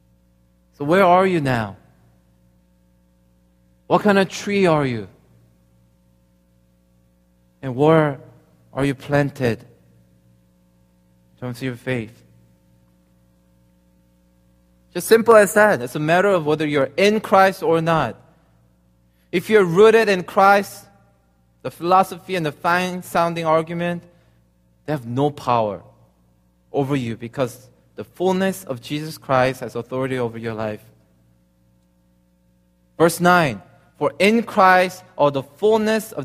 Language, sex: Korean, male